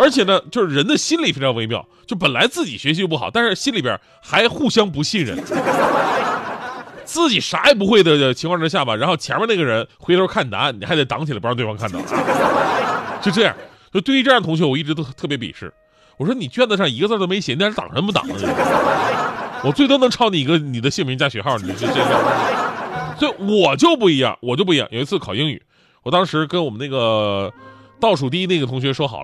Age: 30-49